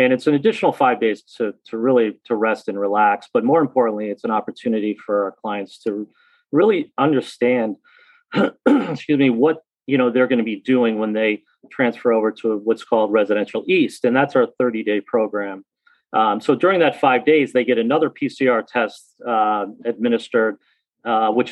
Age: 30-49